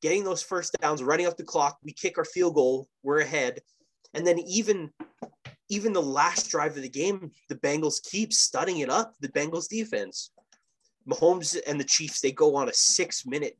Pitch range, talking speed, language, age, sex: 140-195 Hz, 190 wpm, English, 20-39, male